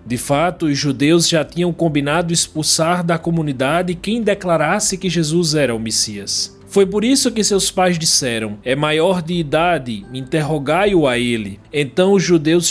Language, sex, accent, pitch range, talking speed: Portuguese, male, Brazilian, 130-185 Hz, 165 wpm